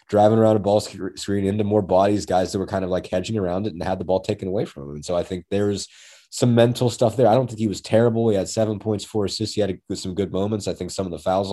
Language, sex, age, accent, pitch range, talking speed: English, male, 30-49, American, 90-105 Hz, 295 wpm